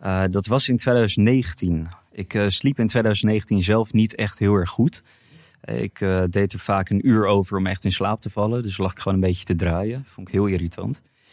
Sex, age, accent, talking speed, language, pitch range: male, 30-49, Dutch, 220 wpm, Dutch, 95-115 Hz